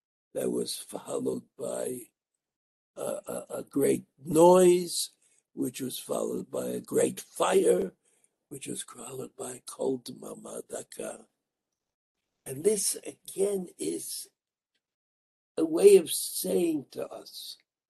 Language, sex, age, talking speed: English, male, 60-79, 110 wpm